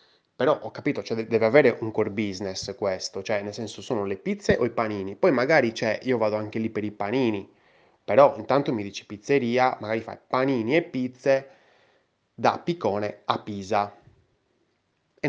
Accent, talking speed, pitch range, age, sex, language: native, 175 wpm, 105-125 Hz, 20-39, male, Italian